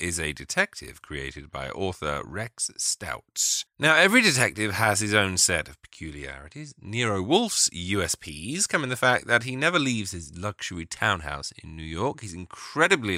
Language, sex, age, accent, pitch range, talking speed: English, male, 30-49, British, 80-115 Hz, 165 wpm